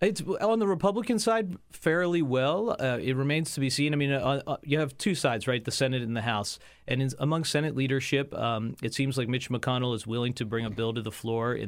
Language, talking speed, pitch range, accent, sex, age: English, 245 wpm, 110-135 Hz, American, male, 30-49